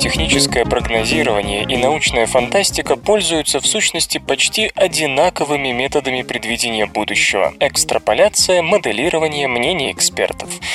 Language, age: Russian, 20-39